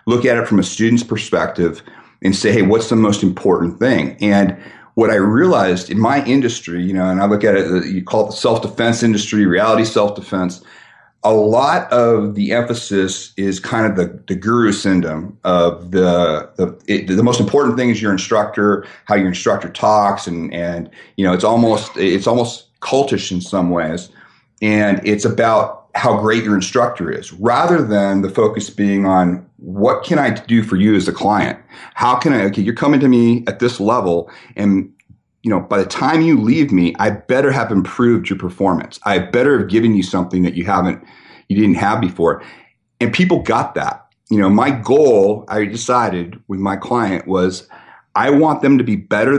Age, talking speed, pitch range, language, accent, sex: 40-59, 190 wpm, 95-115 Hz, English, American, male